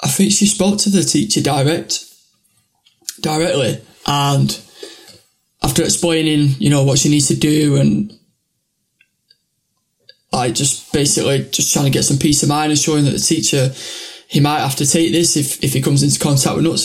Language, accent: English, British